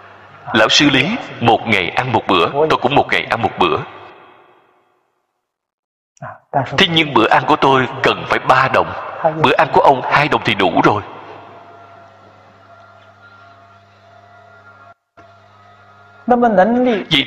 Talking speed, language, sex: 120 wpm, Vietnamese, male